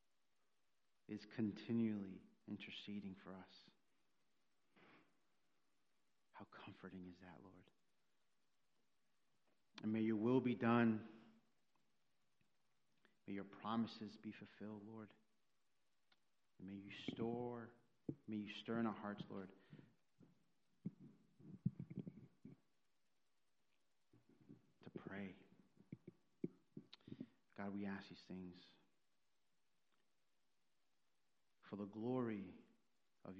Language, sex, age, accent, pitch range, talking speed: English, male, 40-59, American, 95-115 Hz, 75 wpm